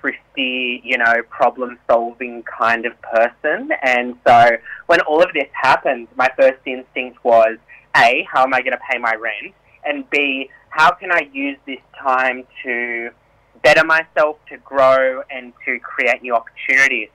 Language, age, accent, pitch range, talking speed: English, 20-39, Australian, 125-160 Hz, 160 wpm